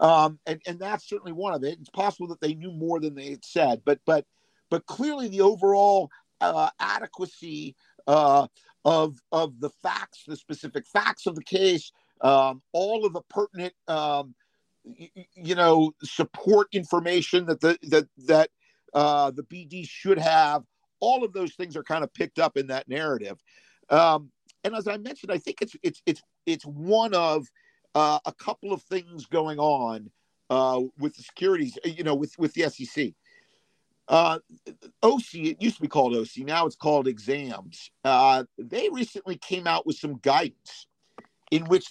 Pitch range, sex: 150-195 Hz, male